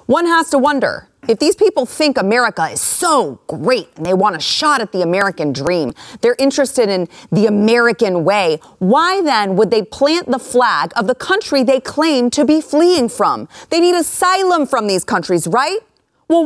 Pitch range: 185-275 Hz